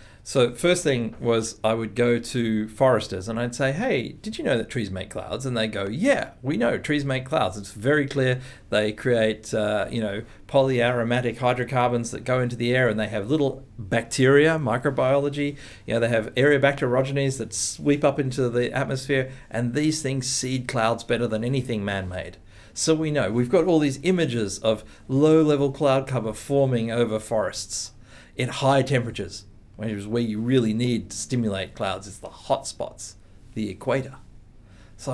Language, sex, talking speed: English, male, 180 wpm